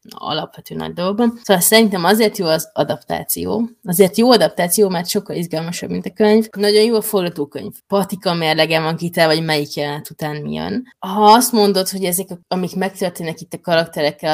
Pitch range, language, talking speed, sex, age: 160-200 Hz, Hungarian, 175 wpm, female, 20-39